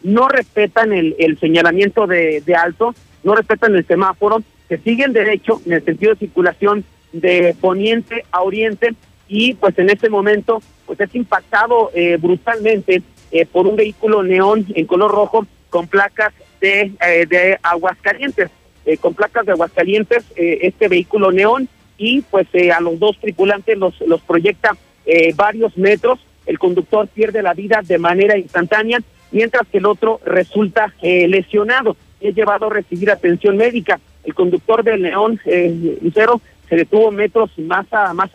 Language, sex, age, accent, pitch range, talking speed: Spanish, male, 50-69, Mexican, 175-220 Hz, 160 wpm